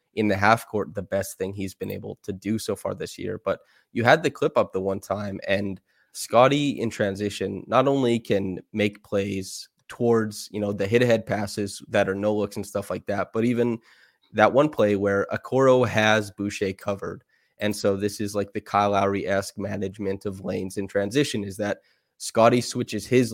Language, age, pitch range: English, 20-39, 100-110 Hz